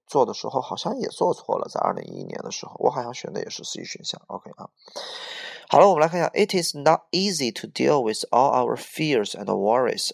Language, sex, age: Chinese, male, 20-39